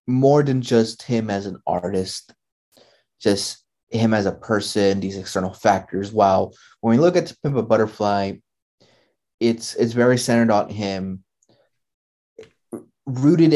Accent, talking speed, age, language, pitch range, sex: American, 135 wpm, 20-39, English, 100-115 Hz, male